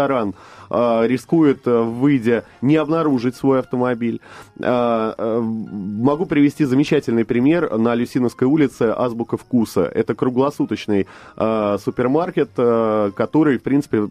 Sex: male